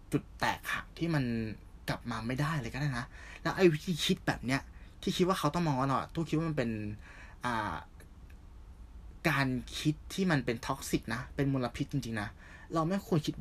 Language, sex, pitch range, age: Thai, male, 90-135 Hz, 20-39